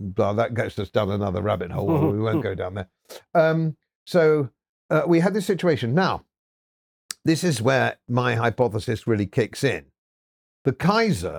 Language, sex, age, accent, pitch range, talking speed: English, male, 50-69, British, 110-155 Hz, 165 wpm